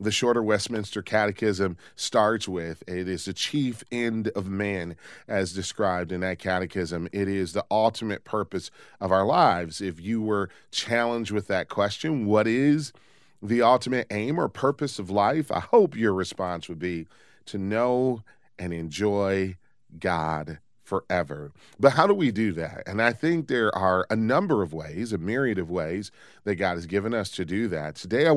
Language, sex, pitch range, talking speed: English, male, 90-115 Hz, 175 wpm